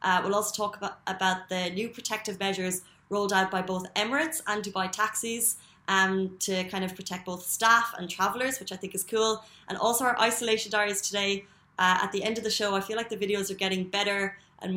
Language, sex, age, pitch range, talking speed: Arabic, female, 20-39, 185-215 Hz, 220 wpm